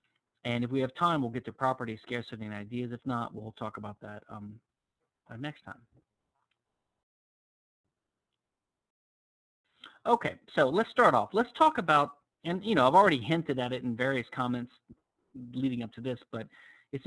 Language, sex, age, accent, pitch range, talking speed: English, male, 40-59, American, 115-135 Hz, 165 wpm